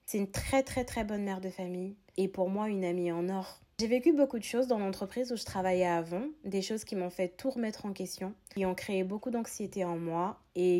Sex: female